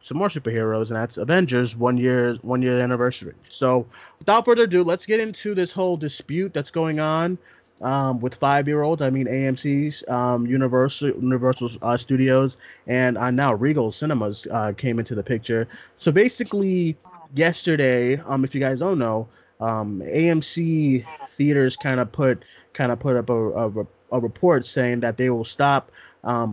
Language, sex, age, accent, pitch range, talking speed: English, male, 20-39, American, 120-145 Hz, 165 wpm